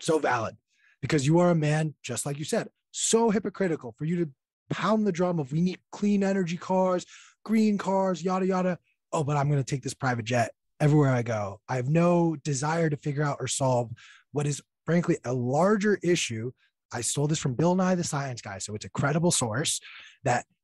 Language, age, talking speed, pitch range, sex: English, 20-39, 205 wpm, 120-170 Hz, male